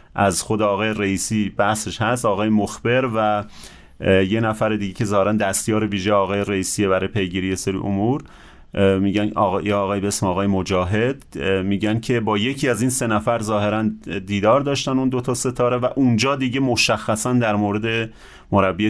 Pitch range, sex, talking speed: 100-120 Hz, male, 160 wpm